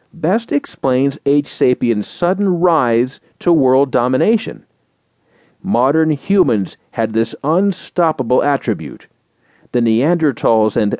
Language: English